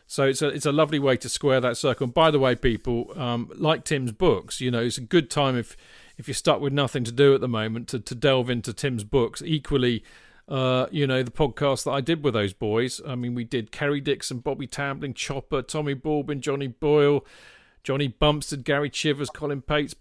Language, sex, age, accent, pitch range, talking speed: English, male, 40-59, British, 125-155 Hz, 220 wpm